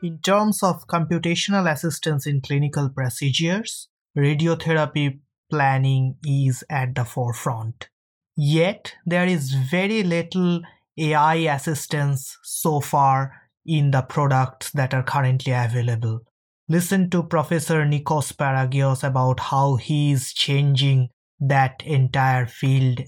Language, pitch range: English, 135-165 Hz